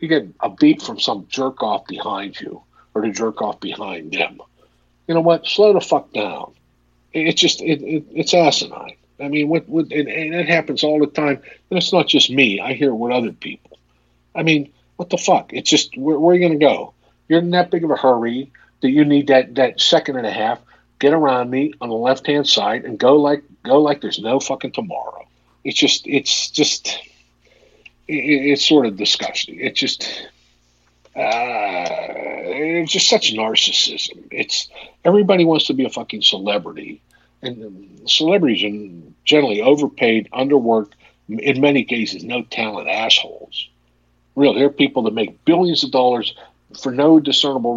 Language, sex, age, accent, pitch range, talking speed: English, male, 50-69, American, 110-150 Hz, 175 wpm